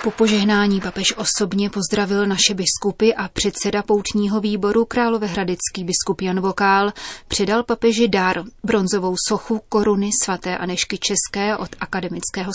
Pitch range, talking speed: 195-215 Hz, 125 wpm